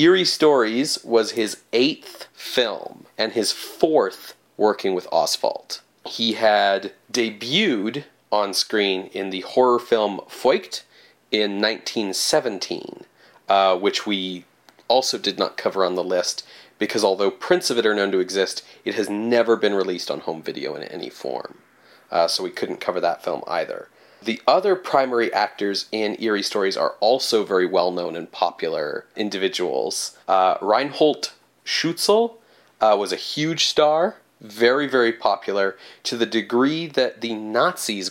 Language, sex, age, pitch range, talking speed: English, male, 30-49, 100-155 Hz, 145 wpm